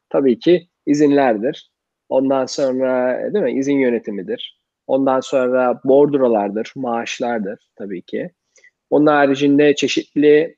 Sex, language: male, Turkish